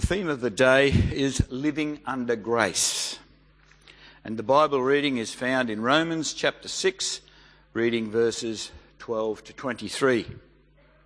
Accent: Australian